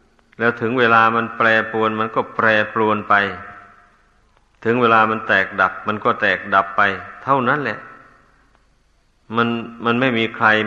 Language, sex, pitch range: Thai, male, 110-125 Hz